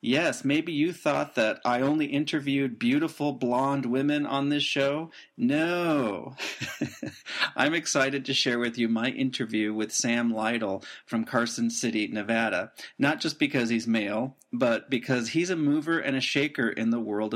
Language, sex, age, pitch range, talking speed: English, male, 40-59, 115-145 Hz, 160 wpm